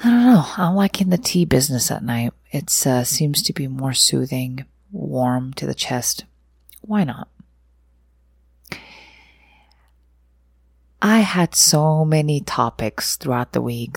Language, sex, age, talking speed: English, female, 30-49, 130 wpm